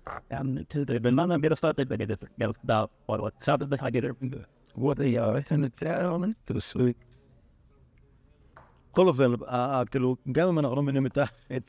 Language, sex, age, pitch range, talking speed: Hebrew, male, 60-79, 110-140 Hz, 55 wpm